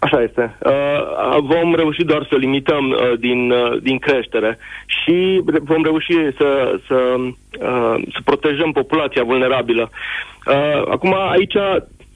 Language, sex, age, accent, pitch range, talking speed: Romanian, male, 30-49, native, 135-175 Hz, 105 wpm